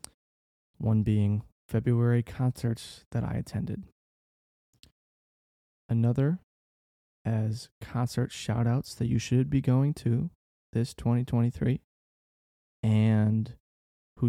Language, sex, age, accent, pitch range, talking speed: English, male, 20-39, American, 105-120 Hz, 90 wpm